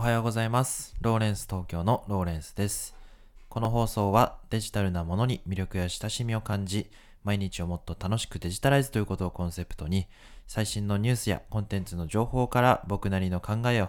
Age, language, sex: 20-39, Japanese, male